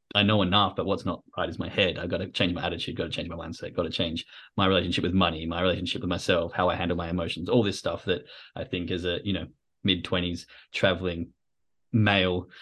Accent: Australian